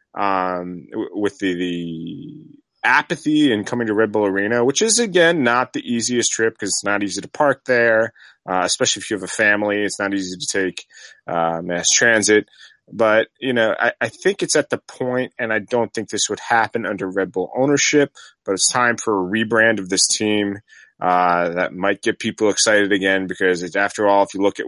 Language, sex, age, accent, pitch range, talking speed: English, male, 30-49, American, 90-115 Hz, 205 wpm